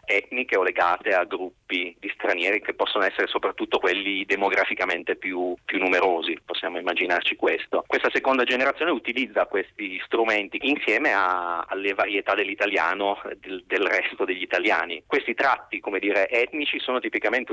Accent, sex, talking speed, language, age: native, male, 145 wpm, Italian, 30-49